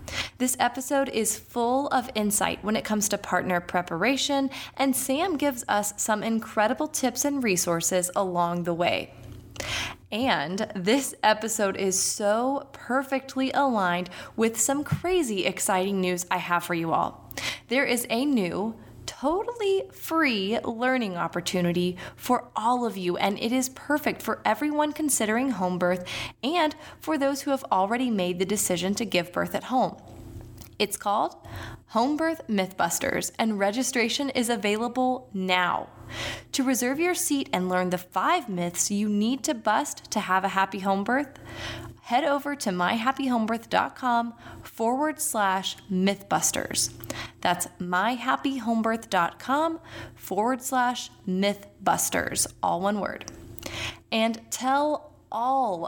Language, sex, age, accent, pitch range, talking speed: English, female, 20-39, American, 185-265 Hz, 130 wpm